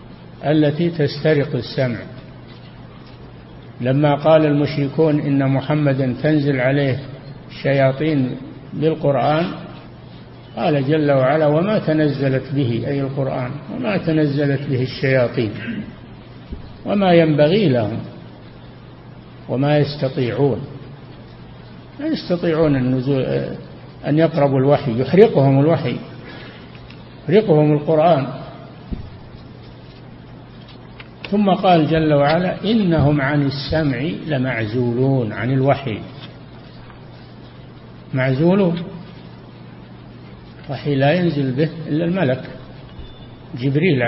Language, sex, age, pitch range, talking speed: Arabic, male, 60-79, 130-155 Hz, 80 wpm